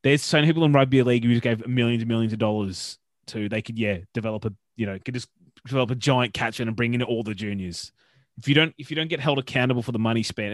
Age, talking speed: 20-39, 280 wpm